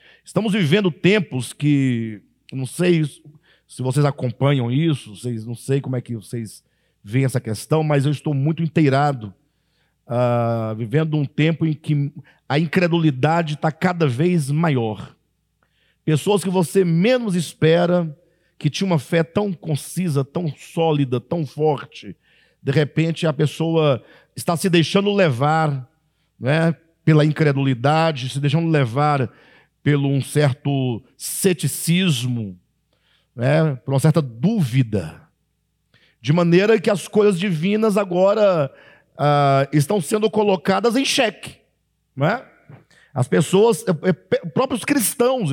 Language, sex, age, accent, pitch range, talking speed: Portuguese, male, 50-69, Brazilian, 140-185 Hz, 120 wpm